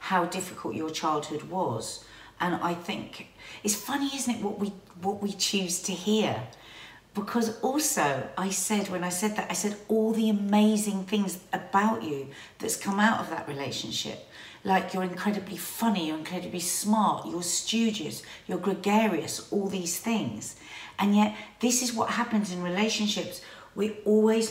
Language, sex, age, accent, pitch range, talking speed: English, female, 50-69, British, 165-210 Hz, 160 wpm